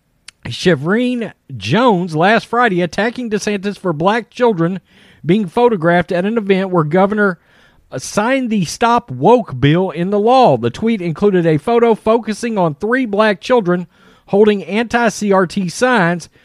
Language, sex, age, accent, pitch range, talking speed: English, male, 40-59, American, 160-225 Hz, 135 wpm